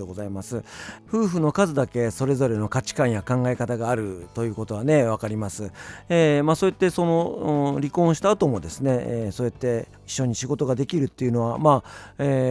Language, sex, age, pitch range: Japanese, male, 50-69, 105-150 Hz